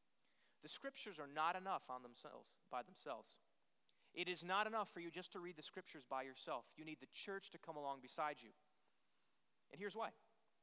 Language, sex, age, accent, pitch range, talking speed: English, male, 30-49, American, 155-205 Hz, 190 wpm